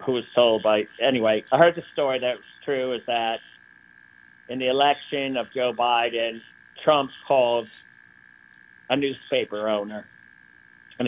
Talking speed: 140 wpm